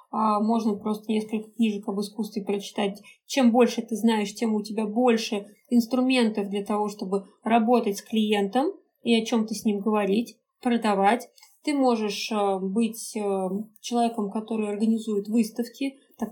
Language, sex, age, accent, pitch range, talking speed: Russian, female, 20-39, native, 205-245 Hz, 140 wpm